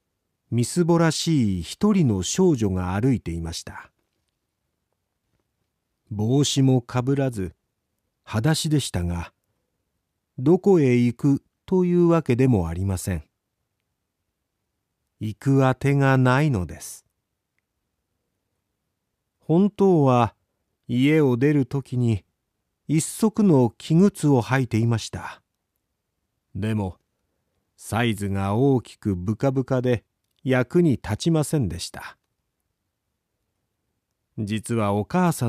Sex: male